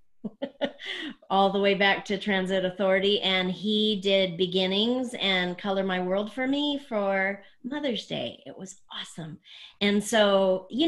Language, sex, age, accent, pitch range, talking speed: English, female, 40-59, American, 180-230 Hz, 145 wpm